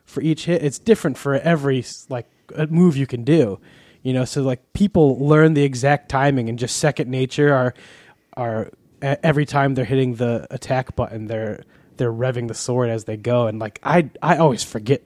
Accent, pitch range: American, 115-135 Hz